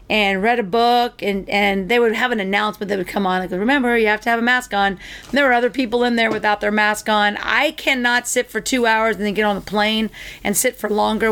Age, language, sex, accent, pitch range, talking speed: 40-59, English, female, American, 210-255 Hz, 275 wpm